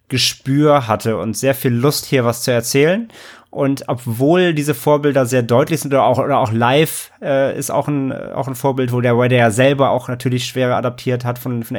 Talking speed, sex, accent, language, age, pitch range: 210 wpm, male, German, German, 30-49, 120-145 Hz